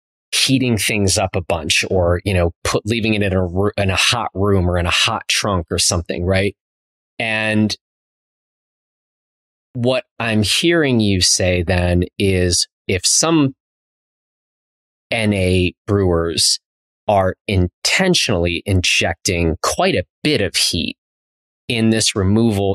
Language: English